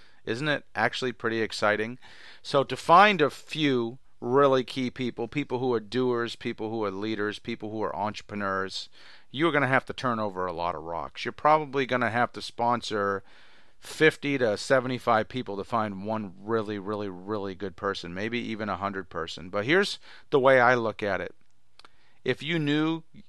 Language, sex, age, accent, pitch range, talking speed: English, male, 40-59, American, 105-125 Hz, 180 wpm